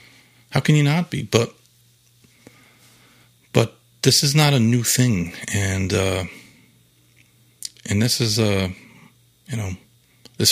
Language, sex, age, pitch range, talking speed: English, male, 40-59, 100-120 Hz, 130 wpm